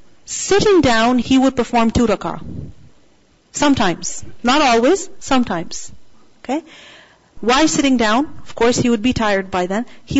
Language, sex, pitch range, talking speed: English, female, 225-285 Hz, 140 wpm